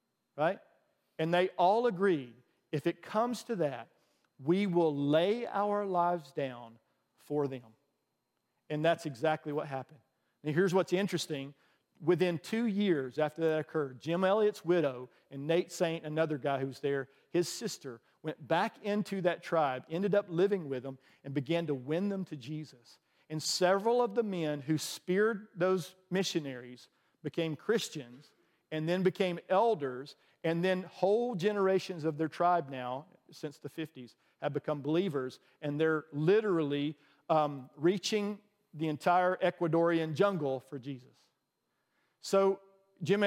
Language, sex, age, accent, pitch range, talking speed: English, male, 50-69, American, 145-185 Hz, 145 wpm